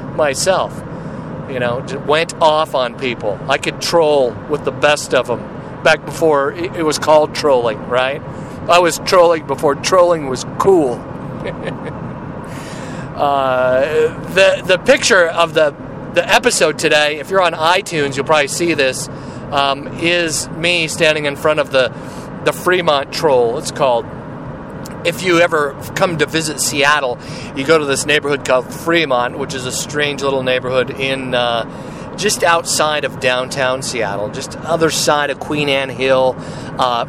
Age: 40-59